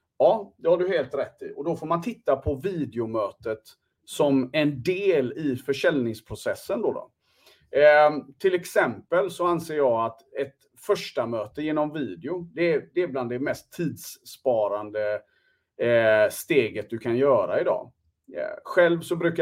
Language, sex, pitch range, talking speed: Swedish, male, 120-170 Hz, 160 wpm